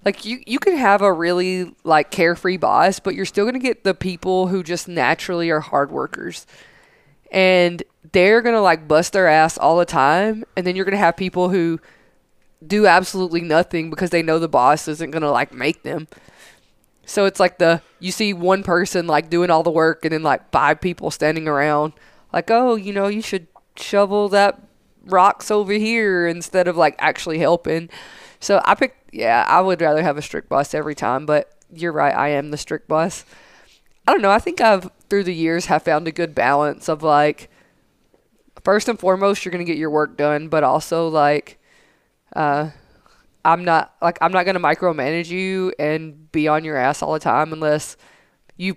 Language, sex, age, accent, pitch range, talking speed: English, female, 20-39, American, 155-190 Hz, 195 wpm